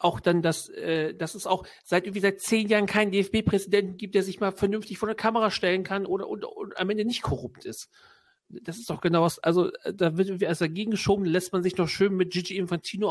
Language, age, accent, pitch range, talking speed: German, 40-59, German, 160-195 Hz, 240 wpm